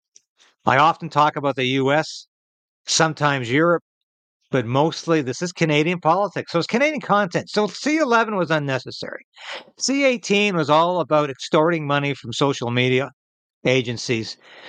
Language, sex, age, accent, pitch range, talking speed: English, male, 60-79, American, 135-170 Hz, 130 wpm